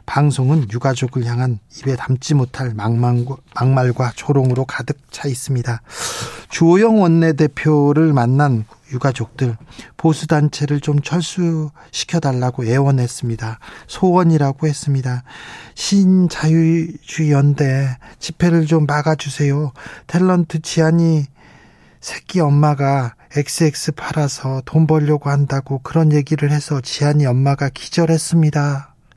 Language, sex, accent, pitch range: Korean, male, native, 130-155 Hz